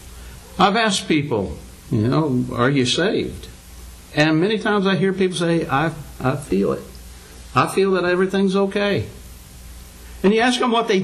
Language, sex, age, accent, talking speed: English, male, 60-79, American, 165 wpm